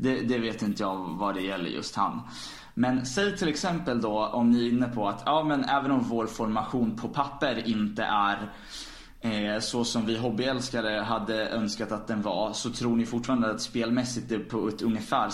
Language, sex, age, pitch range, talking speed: Swedish, male, 20-39, 110-180 Hz, 200 wpm